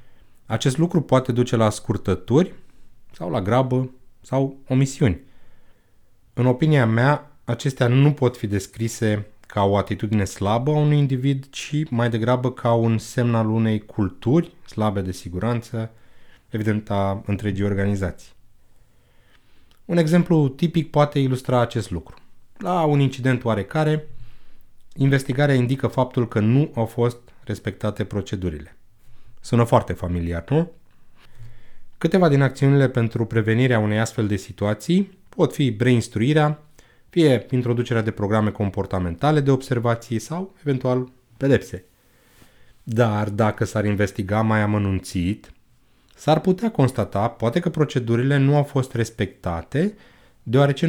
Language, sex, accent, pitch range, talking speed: Romanian, male, native, 110-140 Hz, 125 wpm